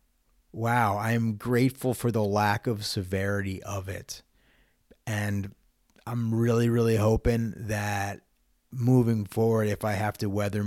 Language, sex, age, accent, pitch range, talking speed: English, male, 30-49, American, 100-115 Hz, 135 wpm